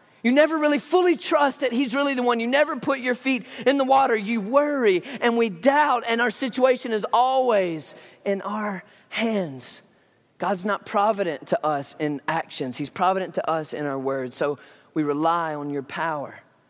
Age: 30-49